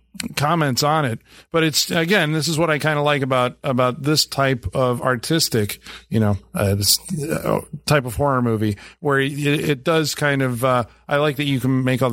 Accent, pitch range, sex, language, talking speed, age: American, 135-175 Hz, male, English, 210 wpm, 40-59